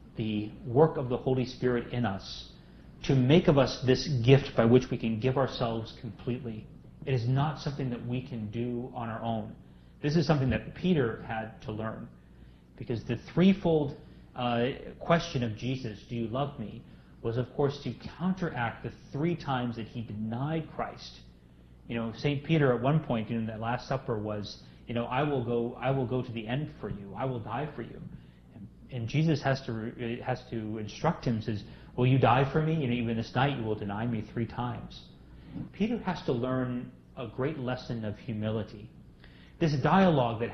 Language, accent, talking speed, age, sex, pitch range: English, American, 190 wpm, 30-49, male, 110-135 Hz